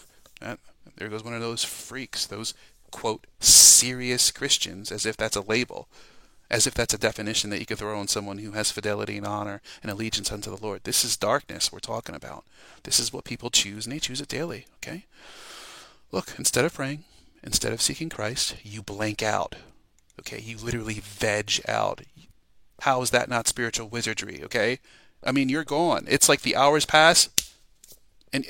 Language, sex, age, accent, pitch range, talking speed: English, male, 30-49, American, 110-140 Hz, 180 wpm